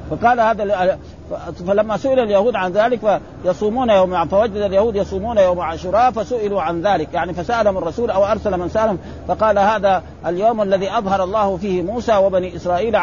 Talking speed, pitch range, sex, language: 160 wpm, 180-220 Hz, male, Arabic